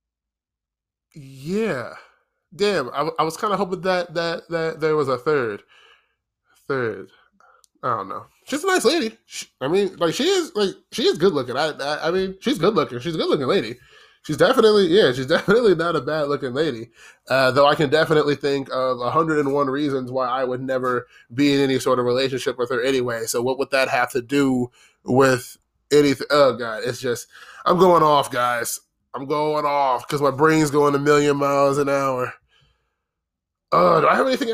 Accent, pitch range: American, 130-190 Hz